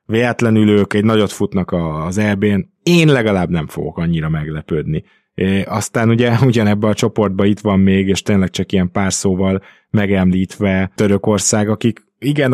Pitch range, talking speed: 95-110 Hz, 150 wpm